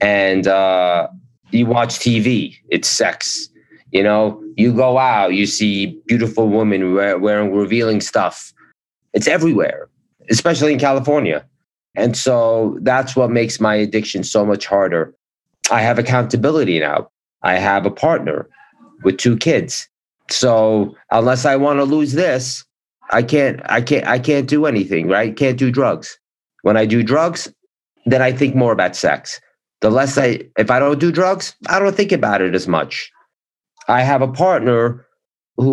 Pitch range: 105-135 Hz